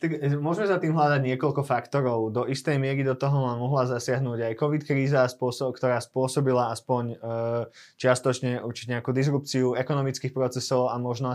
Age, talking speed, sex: 20-39, 145 wpm, male